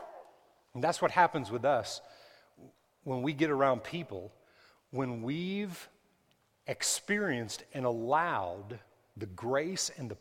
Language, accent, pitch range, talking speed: English, American, 120-150 Hz, 120 wpm